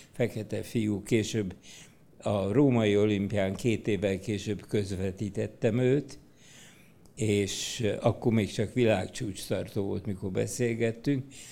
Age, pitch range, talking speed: 60-79, 100-130 Hz, 105 wpm